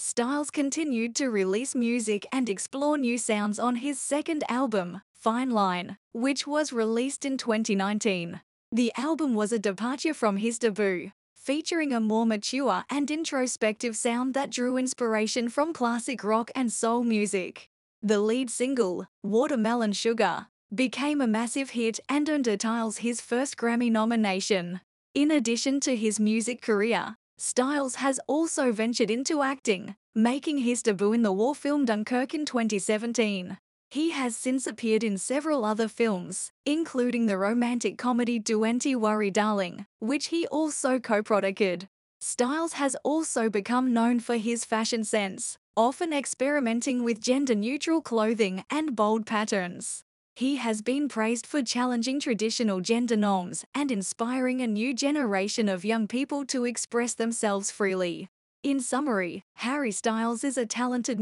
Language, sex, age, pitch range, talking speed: English, female, 10-29, 215-265 Hz, 145 wpm